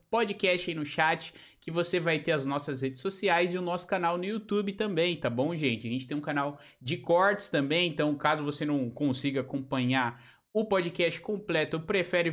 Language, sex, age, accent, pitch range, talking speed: Portuguese, male, 20-39, Brazilian, 150-200 Hz, 195 wpm